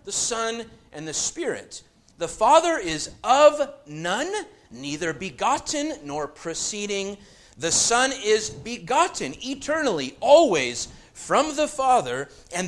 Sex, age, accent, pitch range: male, 40-59, American, 165-235 Hz